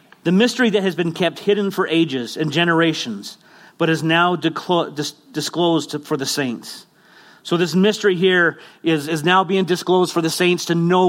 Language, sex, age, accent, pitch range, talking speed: English, male, 40-59, American, 160-200 Hz, 175 wpm